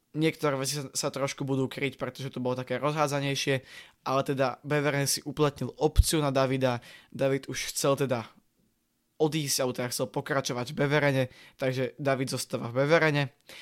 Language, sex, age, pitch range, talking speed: Slovak, male, 20-39, 130-145 Hz, 160 wpm